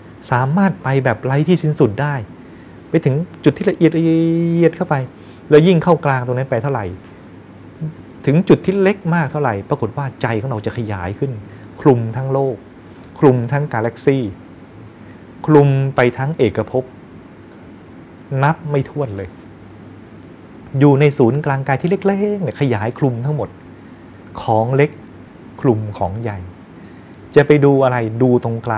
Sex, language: male, English